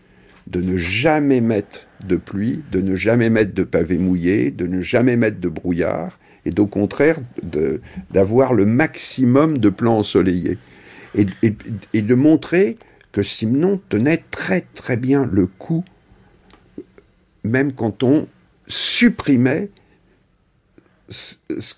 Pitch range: 95-140 Hz